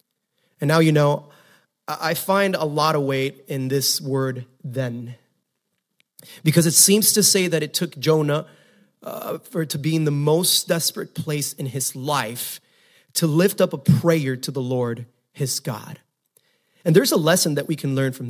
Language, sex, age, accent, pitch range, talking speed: English, male, 30-49, American, 135-180 Hz, 180 wpm